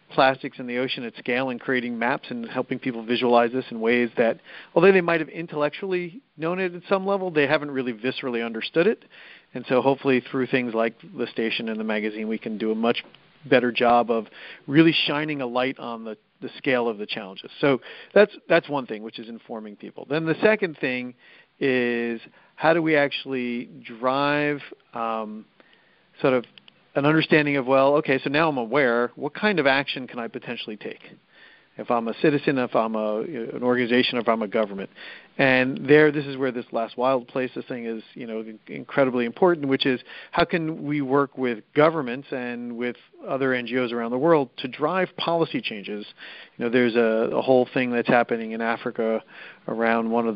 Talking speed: 195 wpm